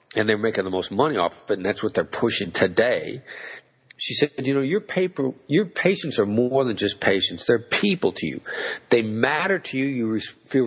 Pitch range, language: 105-145 Hz, English